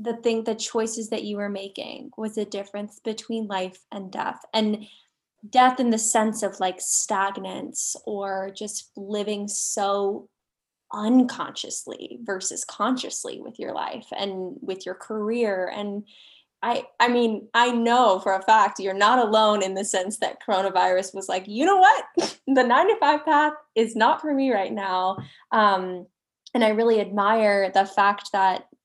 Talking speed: 160 wpm